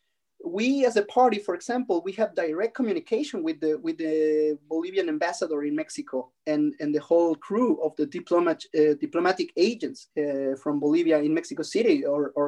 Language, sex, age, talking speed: English, male, 30-49, 175 wpm